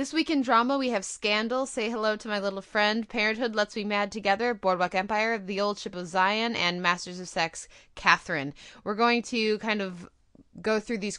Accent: American